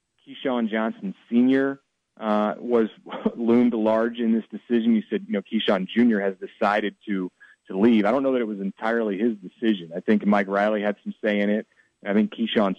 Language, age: English, 30-49